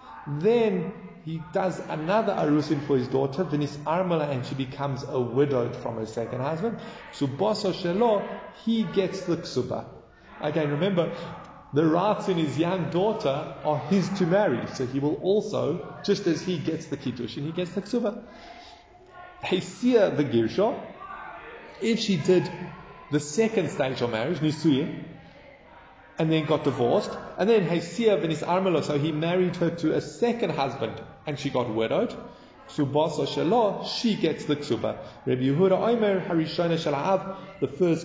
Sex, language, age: male, English, 30-49